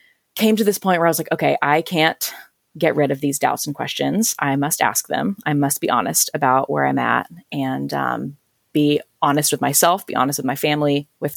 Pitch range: 140-165 Hz